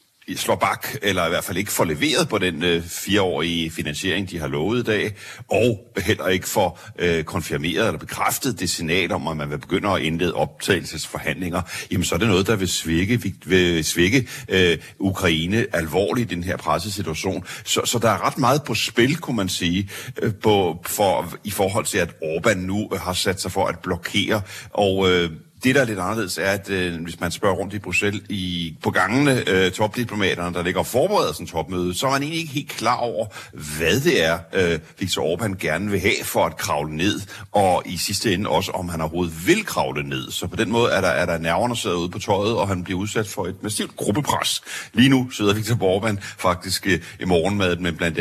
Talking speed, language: 210 wpm, Danish